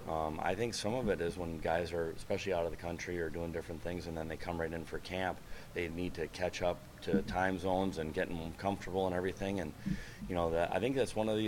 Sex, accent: male, American